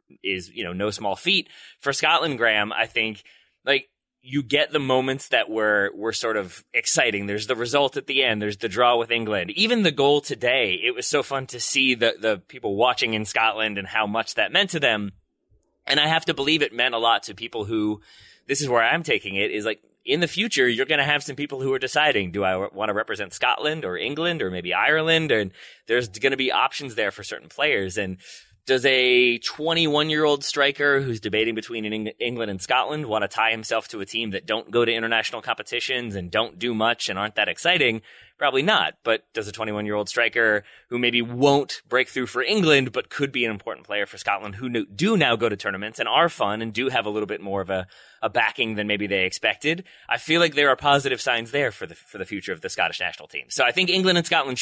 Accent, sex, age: American, male, 20-39